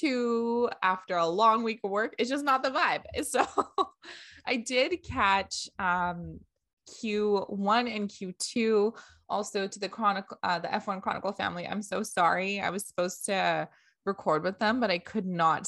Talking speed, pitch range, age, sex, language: 160 wpm, 175-230 Hz, 20-39, female, English